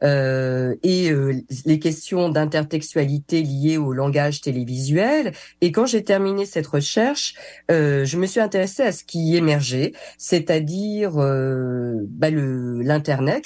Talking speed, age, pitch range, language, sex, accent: 120 wpm, 40-59, 145-210 Hz, French, female, French